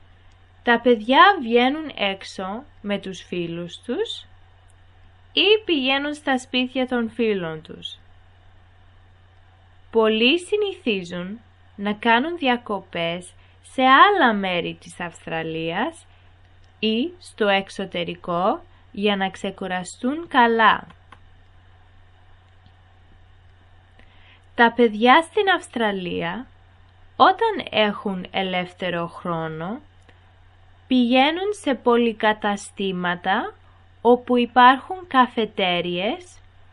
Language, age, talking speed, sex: Greek, 20-39, 75 wpm, female